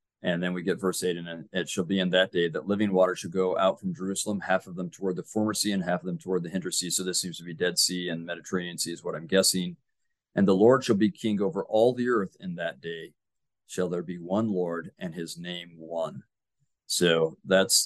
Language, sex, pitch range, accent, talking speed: English, male, 90-100 Hz, American, 250 wpm